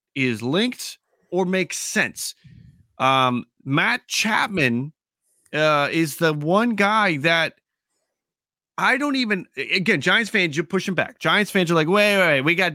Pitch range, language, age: 140-190 Hz, English, 30-49